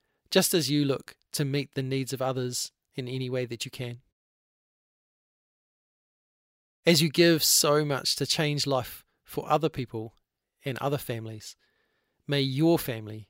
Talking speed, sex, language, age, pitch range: 150 wpm, male, English, 30-49, 125-155 Hz